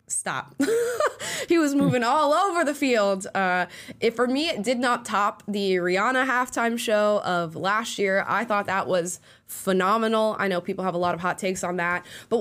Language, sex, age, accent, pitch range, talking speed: English, female, 10-29, American, 180-255 Hz, 195 wpm